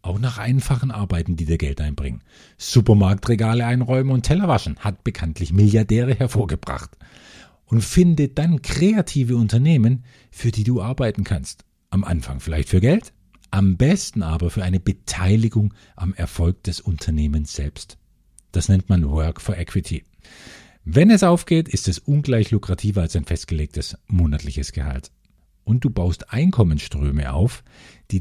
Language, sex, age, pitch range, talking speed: German, male, 50-69, 85-120 Hz, 145 wpm